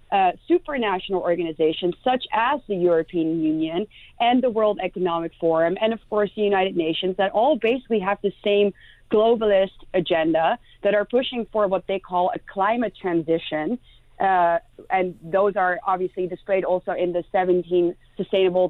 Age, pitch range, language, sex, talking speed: 30-49, 175-230 Hz, English, female, 155 wpm